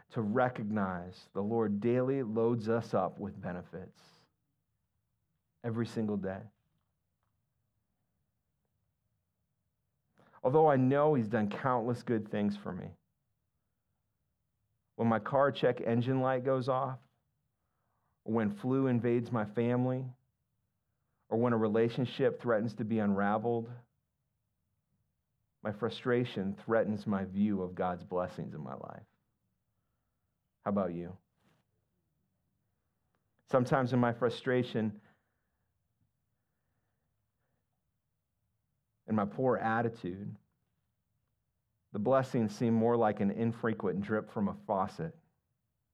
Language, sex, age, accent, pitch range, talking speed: English, male, 40-59, American, 105-125 Hz, 100 wpm